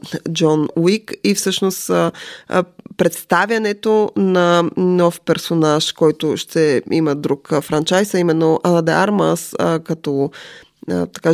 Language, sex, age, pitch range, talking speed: Bulgarian, female, 20-39, 155-185 Hz, 120 wpm